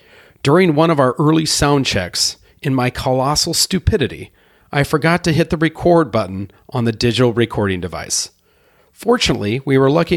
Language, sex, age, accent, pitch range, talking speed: English, male, 40-59, American, 105-145 Hz, 160 wpm